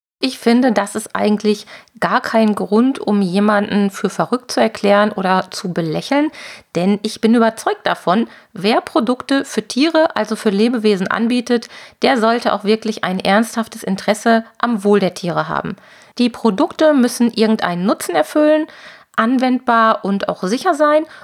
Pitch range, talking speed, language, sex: 205-250 Hz, 150 wpm, German, female